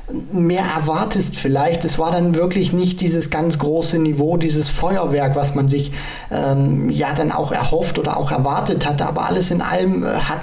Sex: male